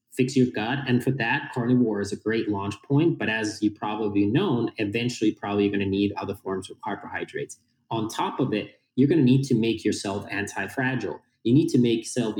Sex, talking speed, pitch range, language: male, 210 wpm, 105-125 Hz, English